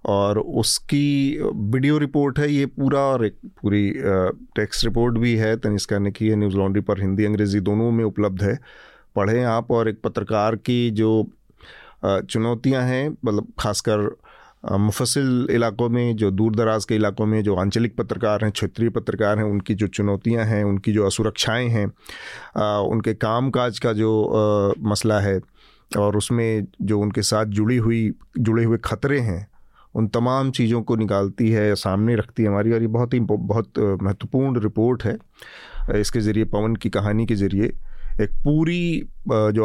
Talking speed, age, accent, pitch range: 160 wpm, 40-59, native, 105-120 Hz